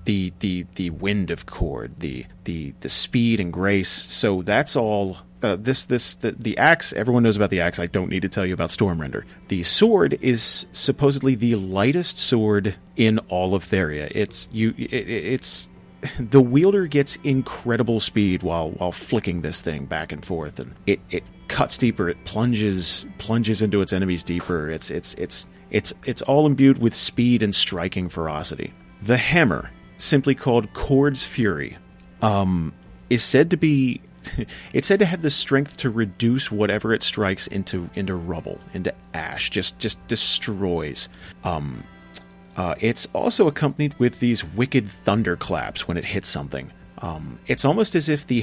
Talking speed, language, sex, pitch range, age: 170 wpm, English, male, 90-120 Hz, 30-49